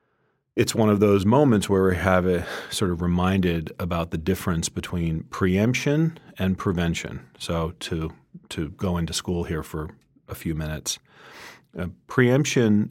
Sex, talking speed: male, 150 wpm